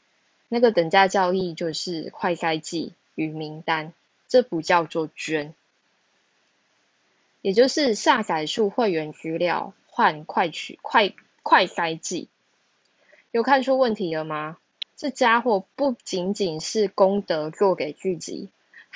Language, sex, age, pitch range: Chinese, female, 20-39, 170-235 Hz